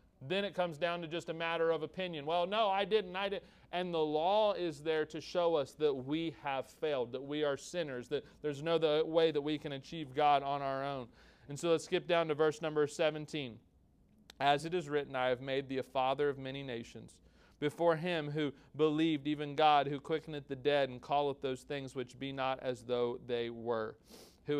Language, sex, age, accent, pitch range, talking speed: English, male, 40-59, American, 130-155 Hz, 210 wpm